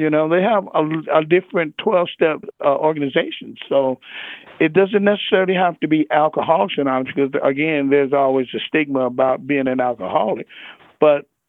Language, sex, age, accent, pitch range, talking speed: English, male, 50-69, American, 135-160 Hz, 155 wpm